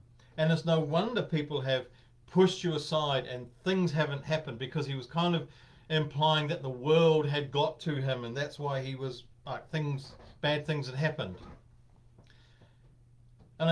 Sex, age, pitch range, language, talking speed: male, 50-69, 120-160 Hz, English, 165 wpm